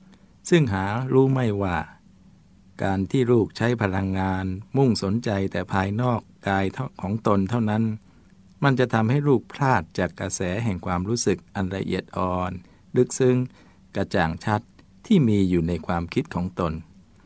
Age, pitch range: 60-79, 95-120 Hz